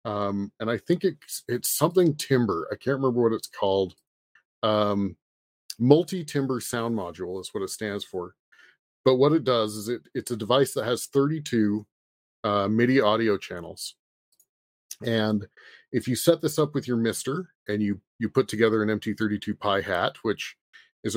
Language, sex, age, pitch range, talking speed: English, male, 30-49, 105-135 Hz, 170 wpm